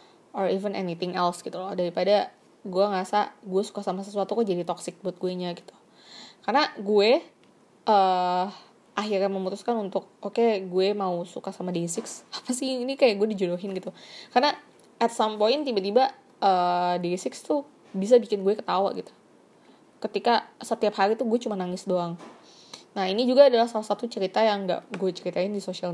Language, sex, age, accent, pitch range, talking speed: Indonesian, female, 20-39, native, 180-220 Hz, 175 wpm